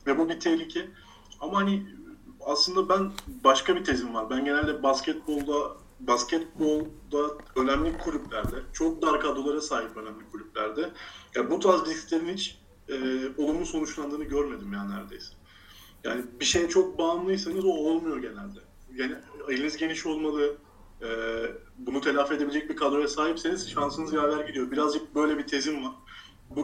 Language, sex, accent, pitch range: Turkish, male, native, 140-200 Hz